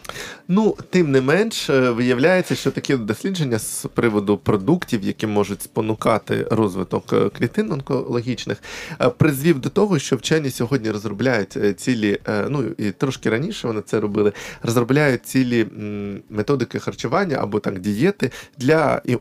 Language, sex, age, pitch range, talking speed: Ukrainian, male, 20-39, 110-145 Hz, 130 wpm